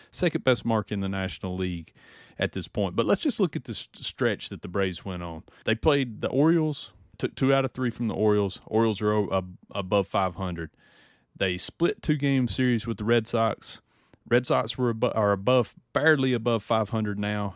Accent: American